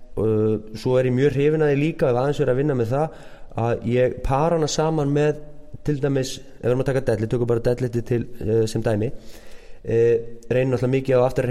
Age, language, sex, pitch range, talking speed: 20-39, English, male, 120-145 Hz, 155 wpm